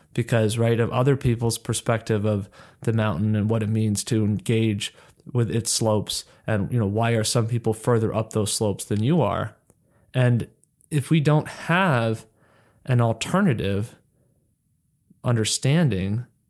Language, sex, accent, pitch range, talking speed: English, male, American, 110-135 Hz, 145 wpm